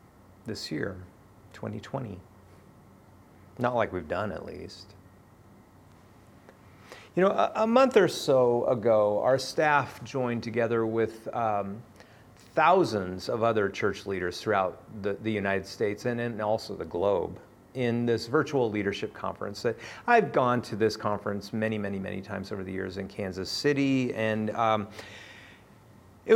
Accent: American